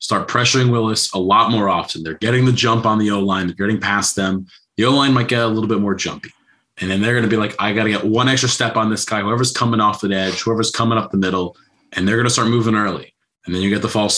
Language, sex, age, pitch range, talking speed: English, male, 20-39, 100-120 Hz, 285 wpm